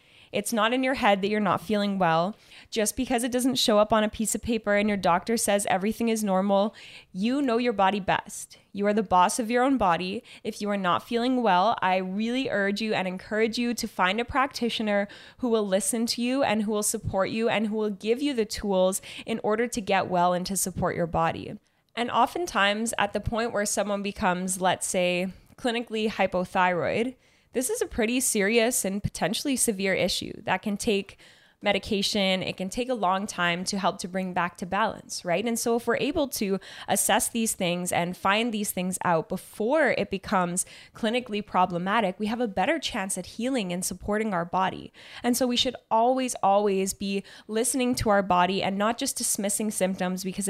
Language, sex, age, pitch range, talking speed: English, female, 10-29, 185-235 Hz, 205 wpm